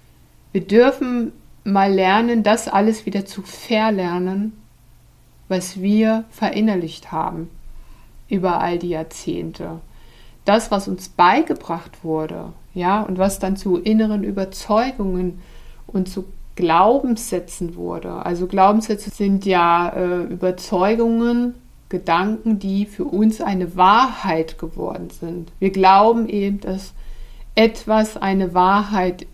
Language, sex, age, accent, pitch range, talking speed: German, female, 60-79, German, 175-210 Hz, 110 wpm